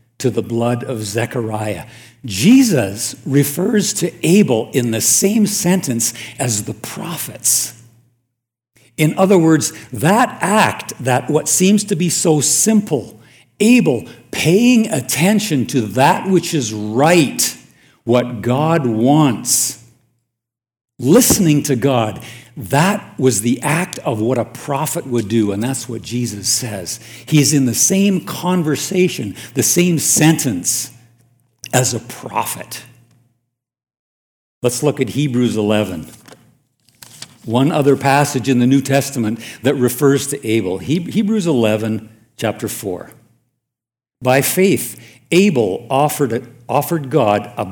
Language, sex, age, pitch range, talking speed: English, male, 60-79, 115-150 Hz, 120 wpm